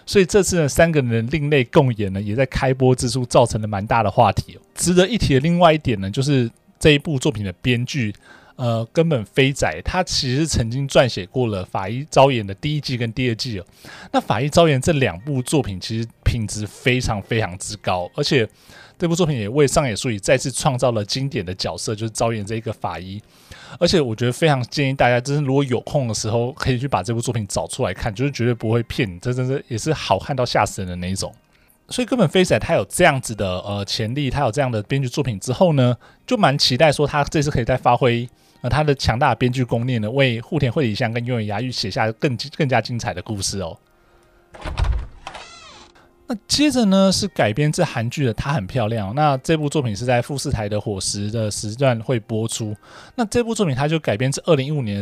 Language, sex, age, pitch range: Chinese, male, 20-39, 110-145 Hz